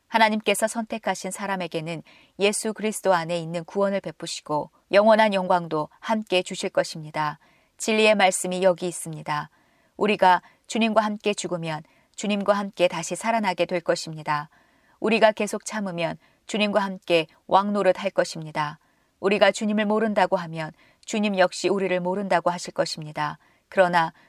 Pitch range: 170-210 Hz